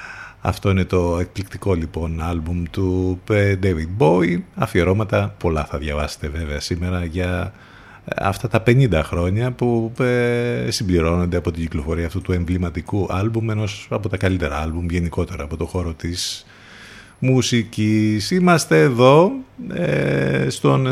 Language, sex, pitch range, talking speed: Greek, male, 90-125 Hz, 125 wpm